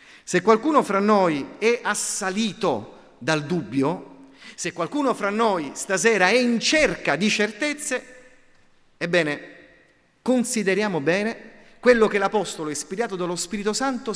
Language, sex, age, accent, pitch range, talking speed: Italian, male, 40-59, native, 165-230 Hz, 120 wpm